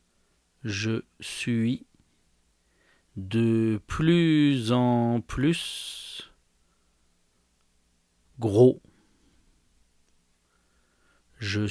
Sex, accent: male, French